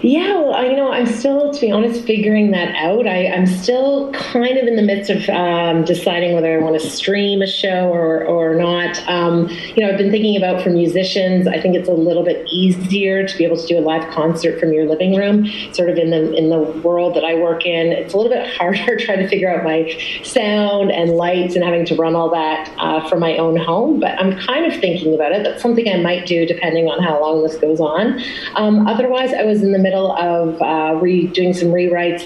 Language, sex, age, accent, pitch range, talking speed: English, female, 30-49, American, 165-195 Hz, 235 wpm